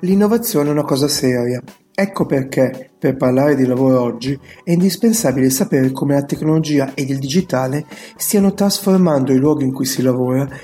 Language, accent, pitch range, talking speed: Italian, native, 130-180 Hz, 165 wpm